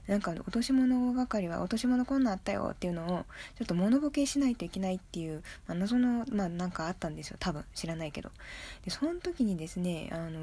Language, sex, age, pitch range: Japanese, female, 20-39, 170-235 Hz